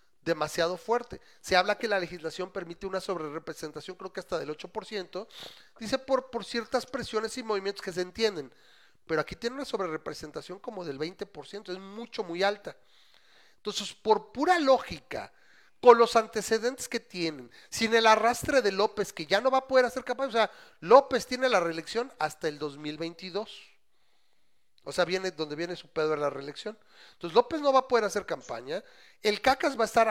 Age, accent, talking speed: 40-59, Mexican, 185 wpm